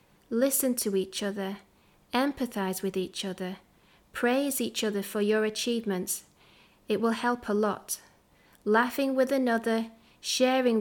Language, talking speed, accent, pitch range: English, 130 wpm, British, 205-240 Hz